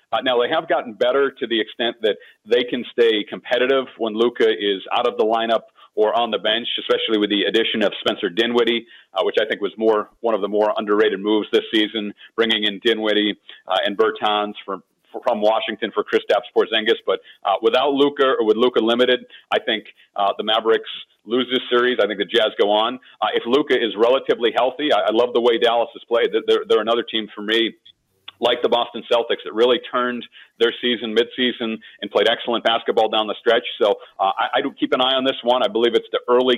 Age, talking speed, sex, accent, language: 40-59, 220 wpm, male, American, English